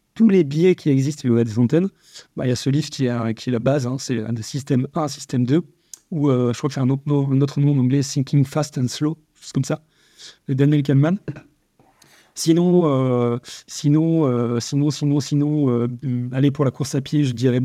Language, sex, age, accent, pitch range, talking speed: French, male, 30-49, French, 125-150 Hz, 245 wpm